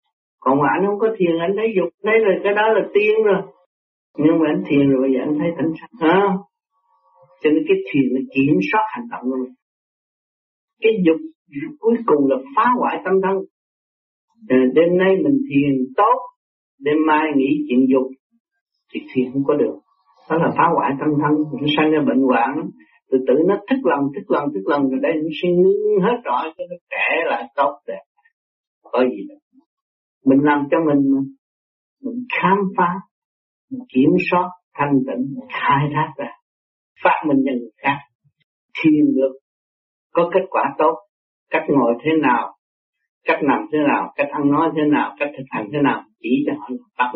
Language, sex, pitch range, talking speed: Vietnamese, male, 140-220 Hz, 190 wpm